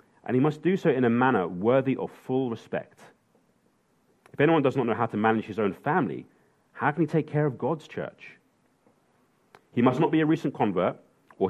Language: English